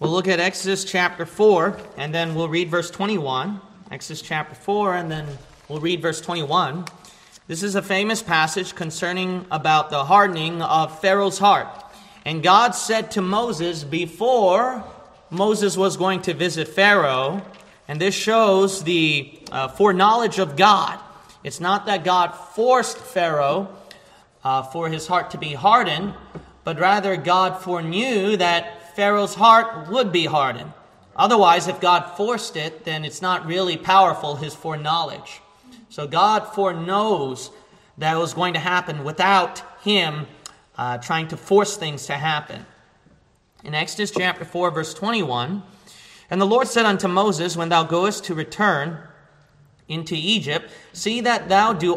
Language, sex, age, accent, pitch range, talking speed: English, male, 30-49, American, 160-200 Hz, 150 wpm